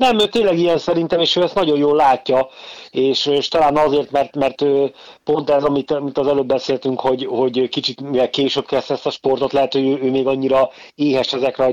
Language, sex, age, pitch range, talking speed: Hungarian, male, 30-49, 120-140 Hz, 215 wpm